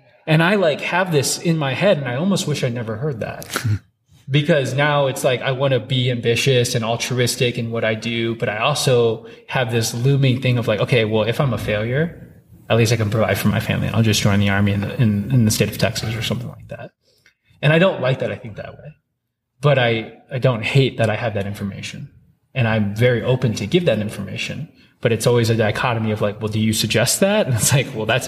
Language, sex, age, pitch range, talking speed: English, male, 20-39, 110-135 Hz, 245 wpm